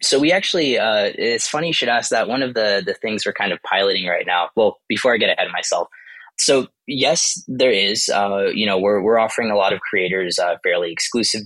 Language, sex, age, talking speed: English, male, 20-39, 235 wpm